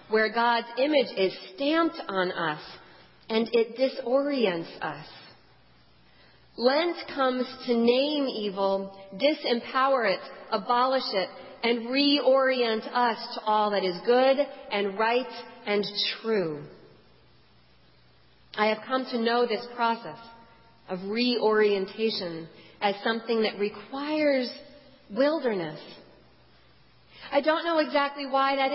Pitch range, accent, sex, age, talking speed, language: 205-260 Hz, American, female, 40-59, 110 wpm, English